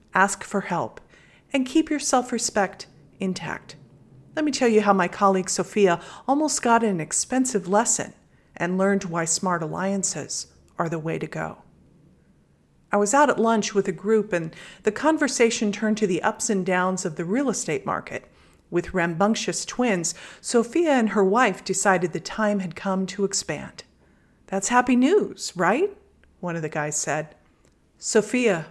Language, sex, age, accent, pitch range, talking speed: English, female, 40-59, American, 180-230 Hz, 160 wpm